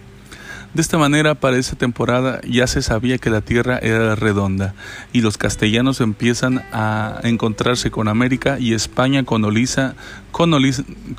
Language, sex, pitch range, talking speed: Spanish, male, 110-130 Hz, 140 wpm